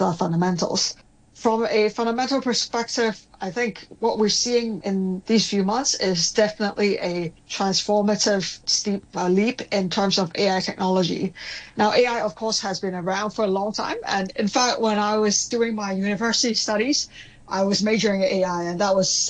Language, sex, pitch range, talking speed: English, female, 195-225 Hz, 170 wpm